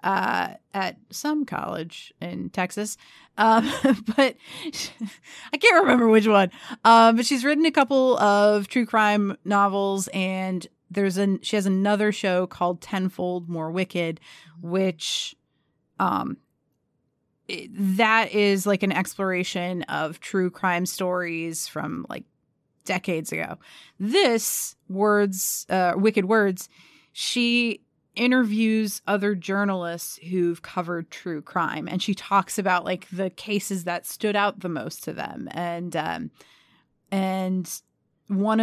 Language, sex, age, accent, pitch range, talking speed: English, female, 30-49, American, 175-205 Hz, 125 wpm